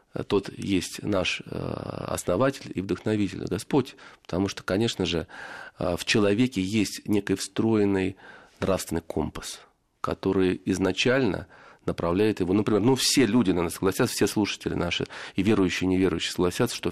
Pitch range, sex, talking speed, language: 90-115 Hz, male, 135 wpm, Russian